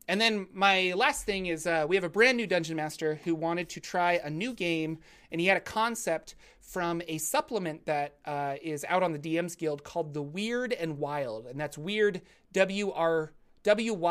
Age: 30-49